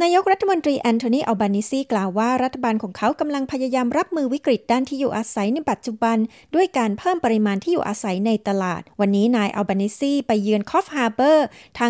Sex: female